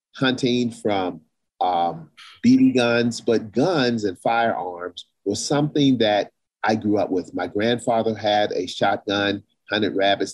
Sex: male